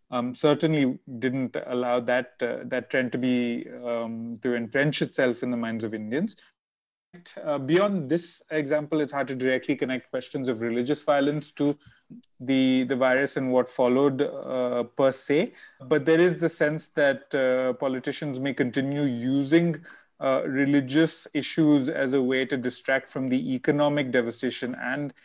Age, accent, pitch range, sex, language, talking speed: 30-49, Indian, 125-145 Hz, male, Swedish, 160 wpm